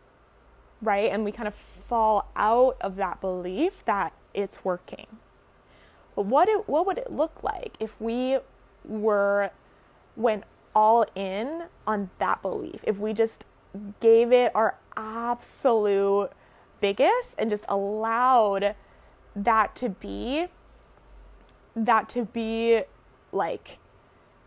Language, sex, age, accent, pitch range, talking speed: English, female, 20-39, American, 200-245 Hz, 115 wpm